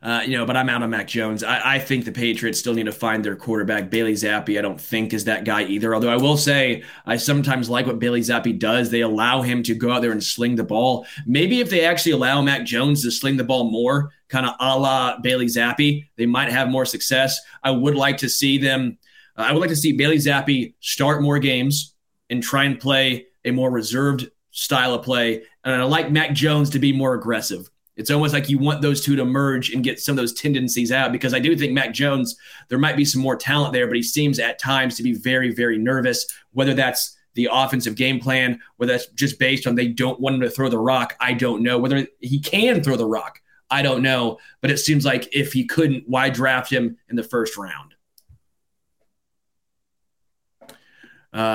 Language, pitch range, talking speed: English, 120-140 Hz, 225 wpm